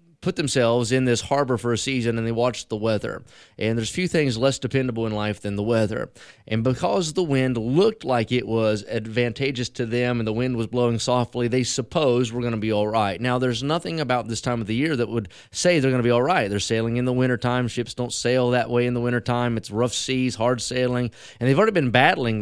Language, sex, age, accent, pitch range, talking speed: English, male, 30-49, American, 115-140 Hz, 245 wpm